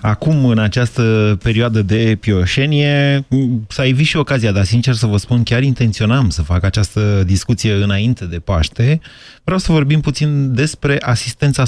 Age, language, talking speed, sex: 30-49, Romanian, 155 wpm, male